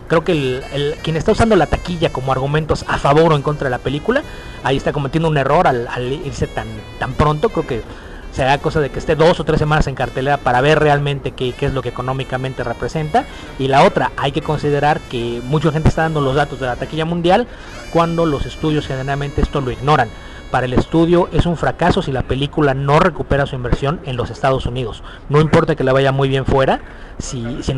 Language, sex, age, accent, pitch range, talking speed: English, male, 40-59, Mexican, 130-160 Hz, 225 wpm